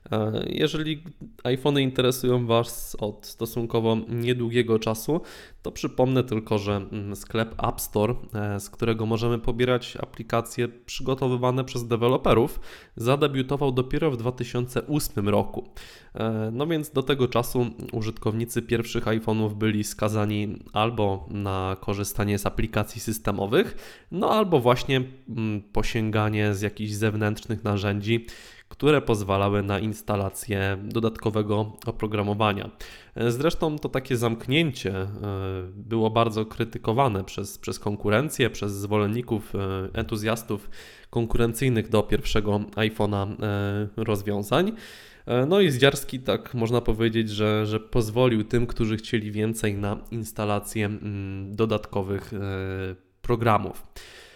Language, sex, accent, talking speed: Polish, male, native, 105 wpm